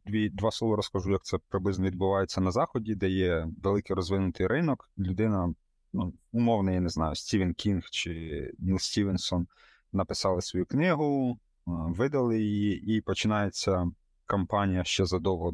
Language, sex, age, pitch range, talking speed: Ukrainian, male, 20-39, 90-105 Hz, 135 wpm